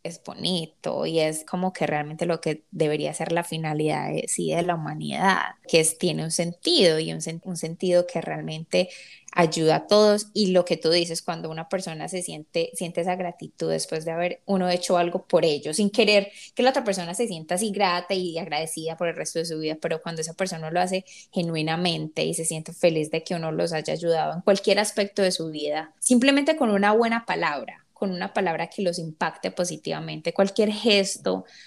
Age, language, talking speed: 10-29, Spanish, 205 wpm